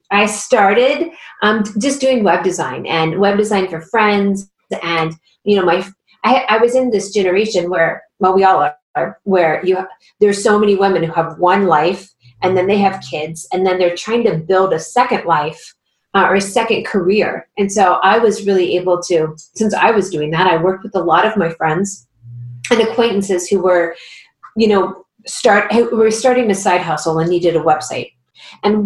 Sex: female